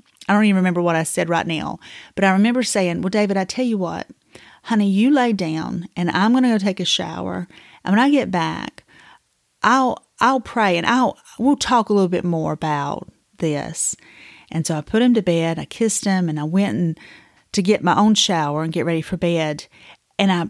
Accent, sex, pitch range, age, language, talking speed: American, female, 180-225 Hz, 30-49, English, 215 wpm